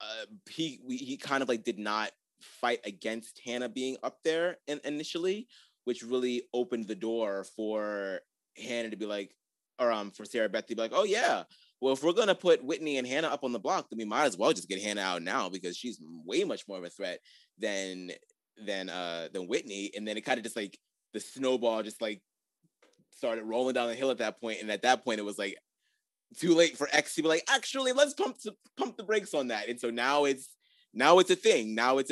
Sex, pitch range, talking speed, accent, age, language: male, 110-155 Hz, 230 wpm, American, 20-39, English